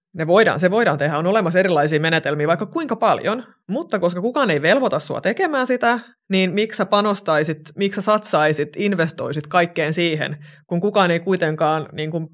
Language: Finnish